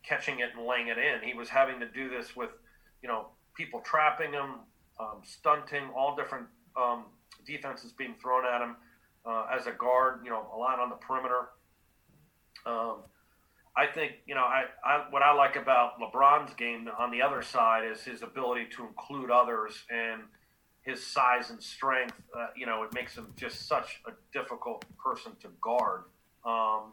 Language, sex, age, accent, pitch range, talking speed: English, male, 40-59, American, 110-130 Hz, 180 wpm